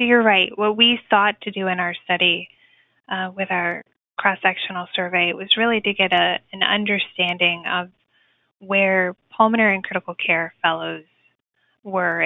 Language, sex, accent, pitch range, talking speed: English, female, American, 185-220 Hz, 155 wpm